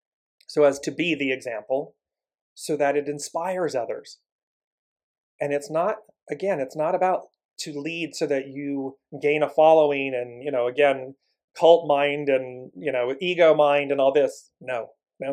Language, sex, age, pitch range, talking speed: English, male, 40-59, 135-160 Hz, 165 wpm